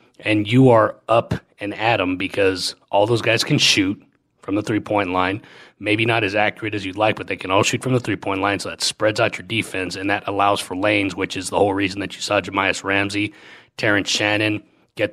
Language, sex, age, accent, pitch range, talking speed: English, male, 30-49, American, 95-110 Hz, 225 wpm